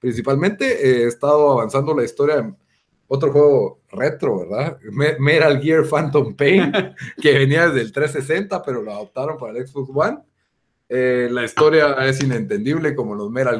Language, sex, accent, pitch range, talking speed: Spanish, male, Mexican, 125-160 Hz, 165 wpm